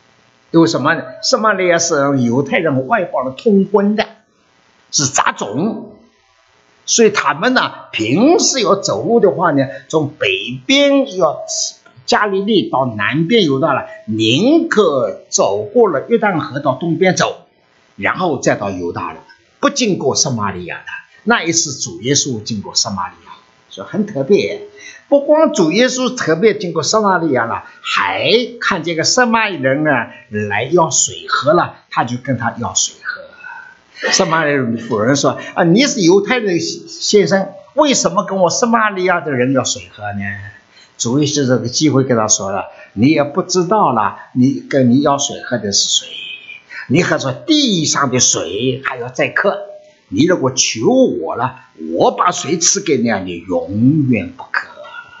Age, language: 50-69, English